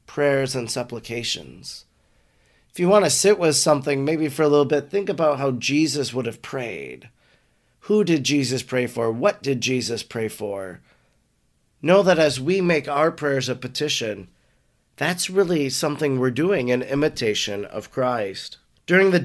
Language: English